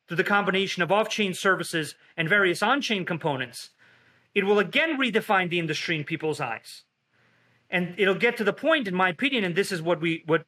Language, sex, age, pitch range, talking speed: English, male, 30-49, 165-210 Hz, 195 wpm